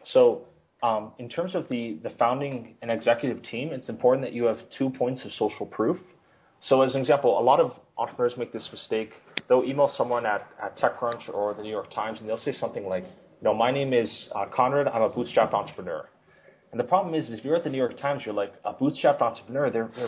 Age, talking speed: 30-49, 230 wpm